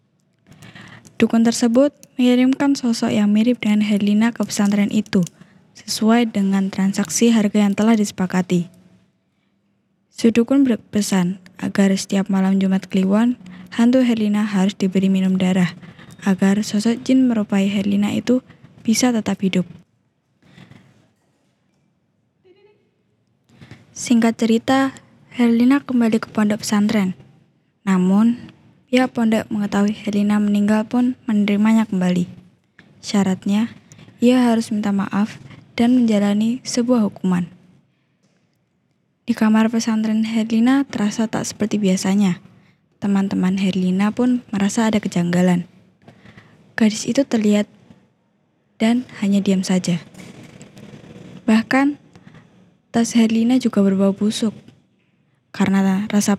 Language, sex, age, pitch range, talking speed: Indonesian, female, 10-29, 190-230 Hz, 100 wpm